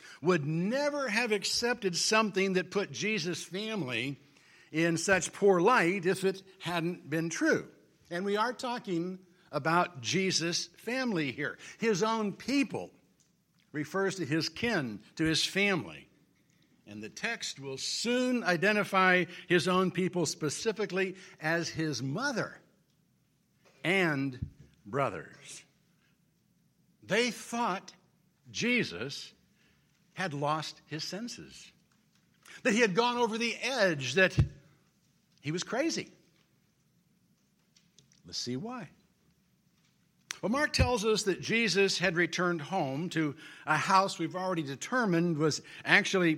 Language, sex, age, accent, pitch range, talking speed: English, male, 60-79, American, 160-205 Hz, 115 wpm